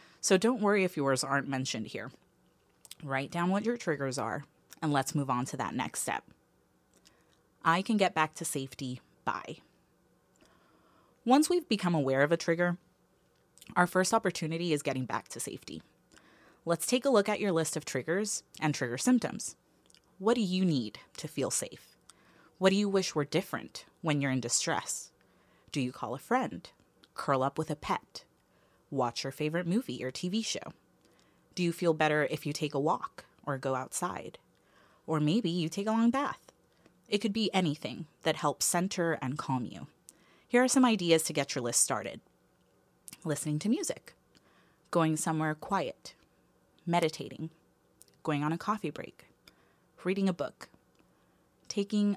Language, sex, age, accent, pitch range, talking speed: English, female, 30-49, American, 140-190 Hz, 165 wpm